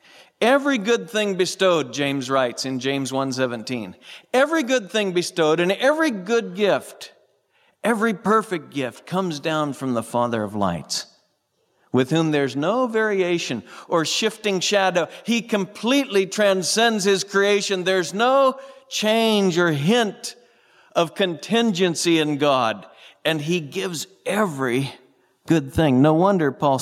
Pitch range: 130-220 Hz